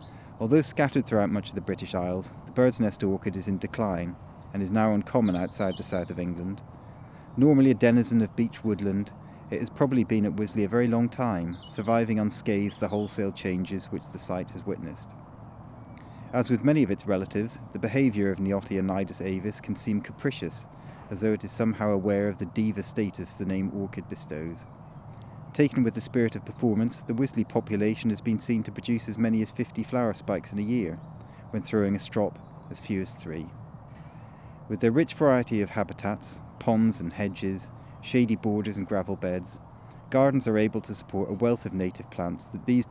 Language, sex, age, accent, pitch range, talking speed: English, male, 30-49, British, 100-125 Hz, 190 wpm